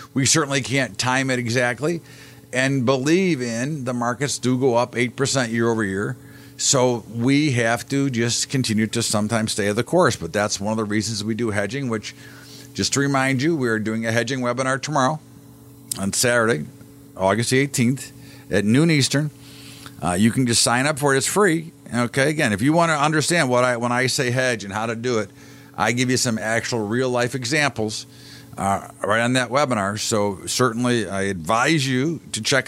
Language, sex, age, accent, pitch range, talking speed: English, male, 50-69, American, 115-140 Hz, 195 wpm